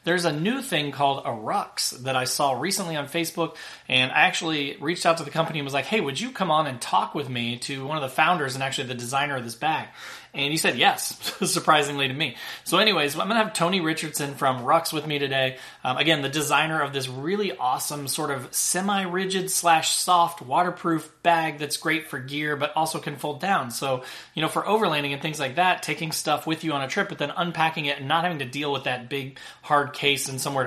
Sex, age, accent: male, 30-49, American